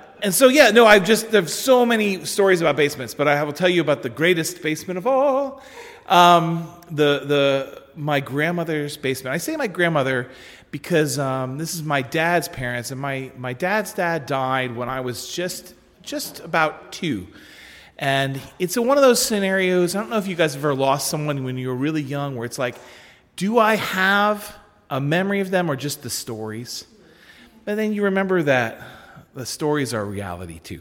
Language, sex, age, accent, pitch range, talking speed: English, male, 40-59, American, 125-185 Hz, 195 wpm